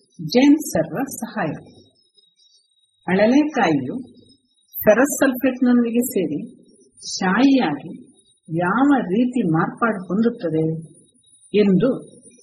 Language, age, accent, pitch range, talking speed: Kannada, 50-69, native, 160-245 Hz, 65 wpm